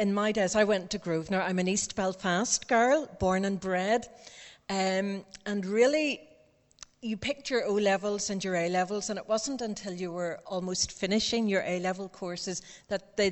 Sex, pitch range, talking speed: female, 185-220 Hz, 170 wpm